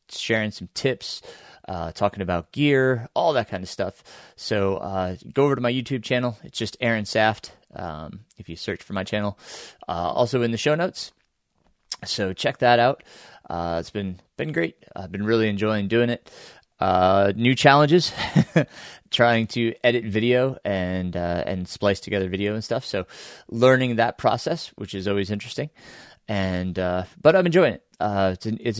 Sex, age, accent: male, 30-49, American